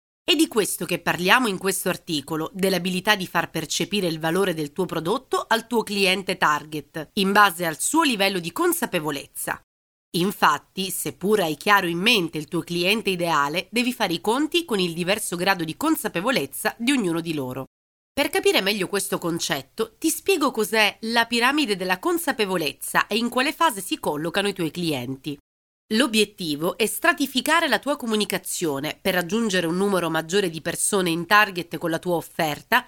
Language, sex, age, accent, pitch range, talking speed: Italian, female, 30-49, native, 165-230 Hz, 170 wpm